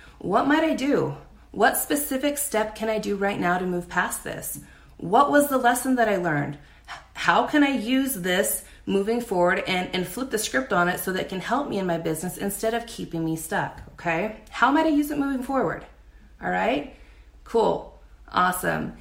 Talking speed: 200 wpm